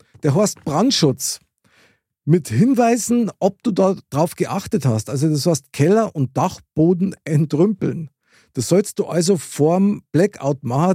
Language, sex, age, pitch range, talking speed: German, male, 50-69, 140-190 Hz, 130 wpm